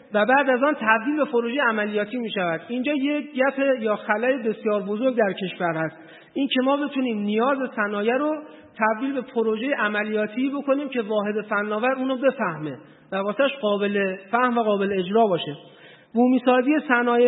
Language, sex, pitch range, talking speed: Persian, male, 210-265 Hz, 165 wpm